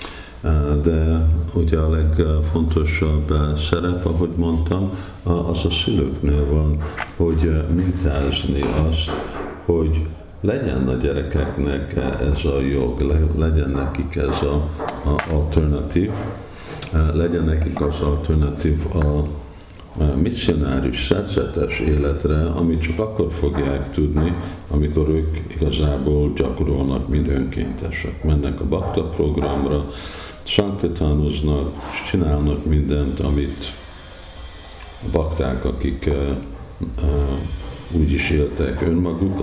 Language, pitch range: Hungarian, 70-85 Hz